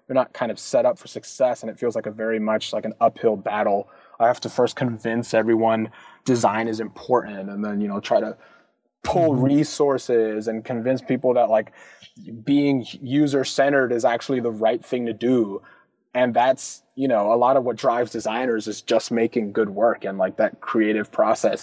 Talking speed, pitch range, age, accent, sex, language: 195 wpm, 110-135 Hz, 20-39, American, male, English